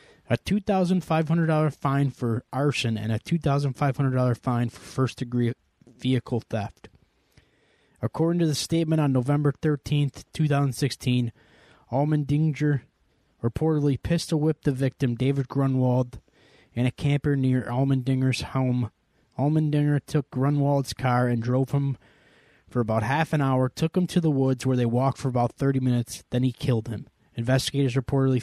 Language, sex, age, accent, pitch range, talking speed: English, male, 20-39, American, 125-145 Hz, 135 wpm